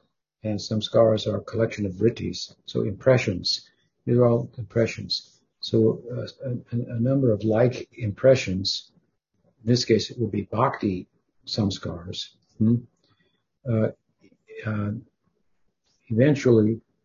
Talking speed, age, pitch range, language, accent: 125 wpm, 60-79, 105-120 Hz, English, American